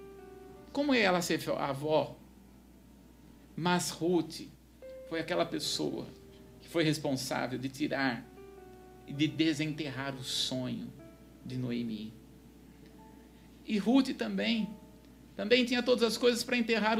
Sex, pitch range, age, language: male, 175-240 Hz, 50-69, Portuguese